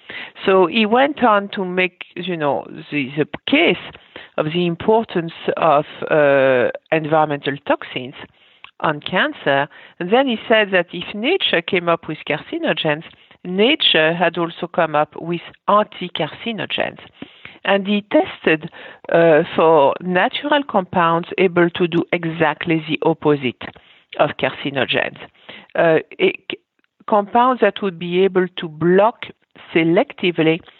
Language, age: English, 50-69